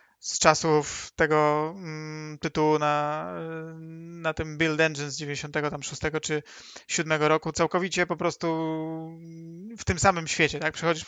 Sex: male